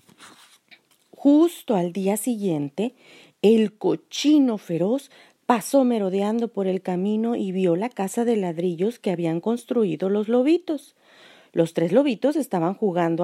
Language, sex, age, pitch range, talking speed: Spanish, female, 40-59, 180-270 Hz, 125 wpm